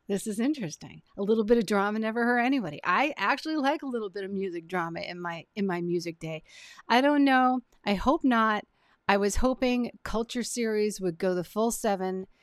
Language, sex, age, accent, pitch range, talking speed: English, female, 40-59, American, 190-245 Hz, 200 wpm